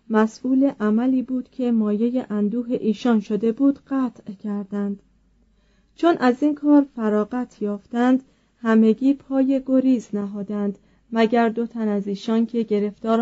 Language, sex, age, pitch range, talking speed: Persian, female, 30-49, 210-255 Hz, 125 wpm